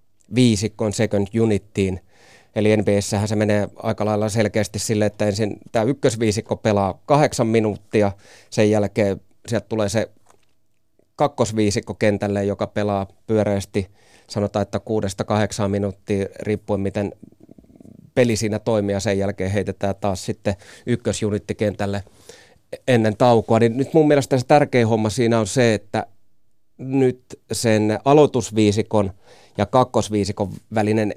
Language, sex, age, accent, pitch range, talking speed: Finnish, male, 30-49, native, 100-115 Hz, 125 wpm